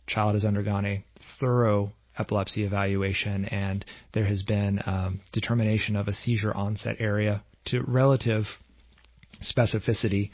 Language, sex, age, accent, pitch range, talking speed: English, male, 30-49, American, 100-115 Hz, 120 wpm